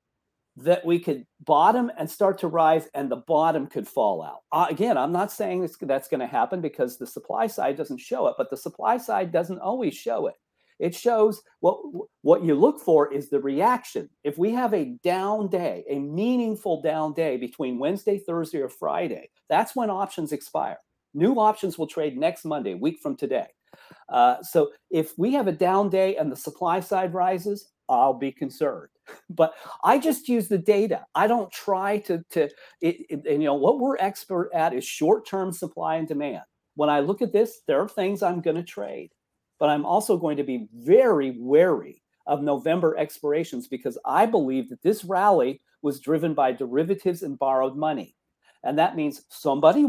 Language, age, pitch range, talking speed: English, 40-59, 150-210 Hz, 185 wpm